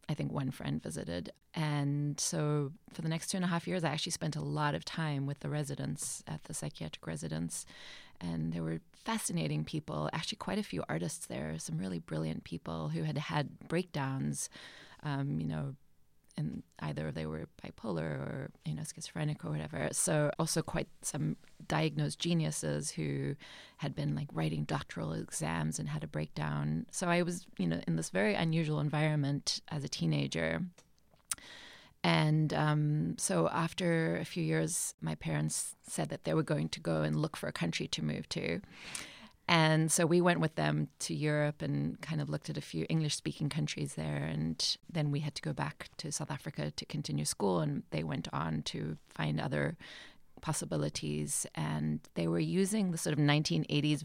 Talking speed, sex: 180 wpm, female